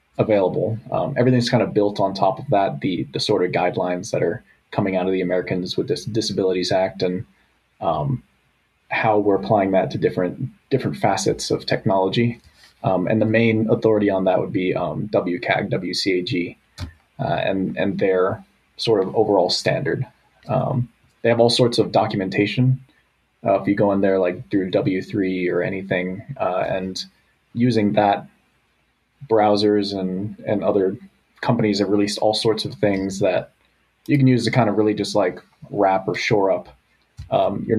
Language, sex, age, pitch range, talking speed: English, male, 20-39, 95-120 Hz, 170 wpm